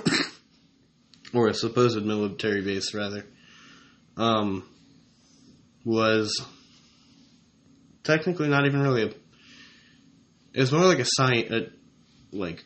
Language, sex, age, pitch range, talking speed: English, male, 20-39, 105-120 Hz, 100 wpm